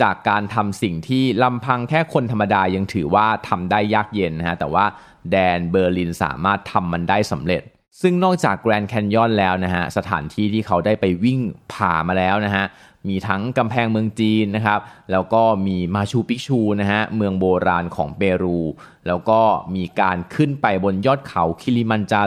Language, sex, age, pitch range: Thai, male, 20-39, 90-110 Hz